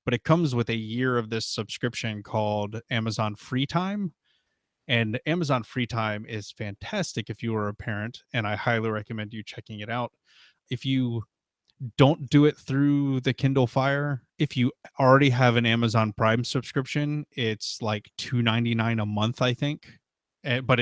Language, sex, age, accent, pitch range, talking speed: English, male, 20-39, American, 110-130 Hz, 165 wpm